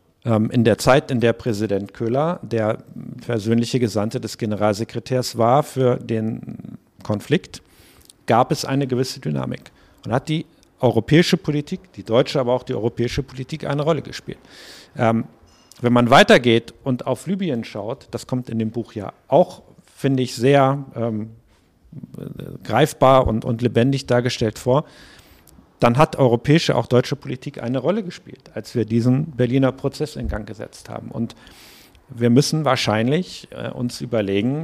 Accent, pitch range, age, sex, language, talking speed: German, 115-140 Hz, 50-69, male, German, 150 wpm